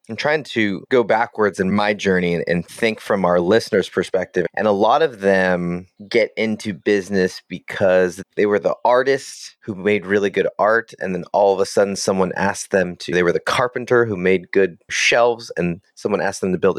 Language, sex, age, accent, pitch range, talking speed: English, male, 30-49, American, 95-165 Hz, 200 wpm